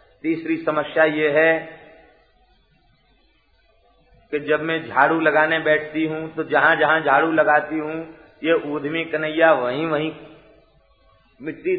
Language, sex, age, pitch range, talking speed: Hindi, male, 50-69, 140-185 Hz, 115 wpm